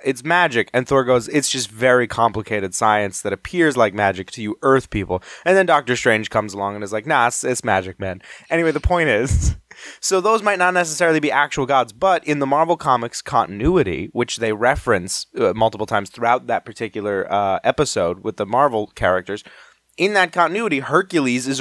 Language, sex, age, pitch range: English, male, 20-39, 105-145 Hz